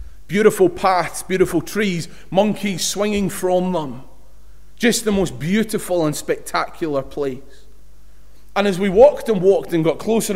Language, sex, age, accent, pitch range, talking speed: English, male, 30-49, British, 150-195 Hz, 140 wpm